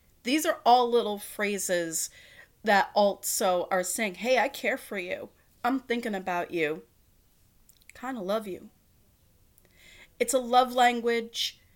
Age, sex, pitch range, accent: 30-49, female, 175-235 Hz, American